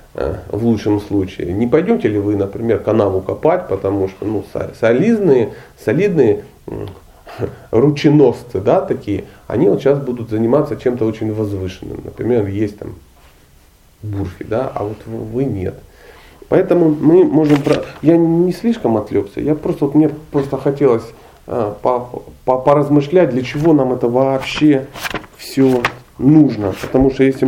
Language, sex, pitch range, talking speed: Russian, male, 110-150 Hz, 140 wpm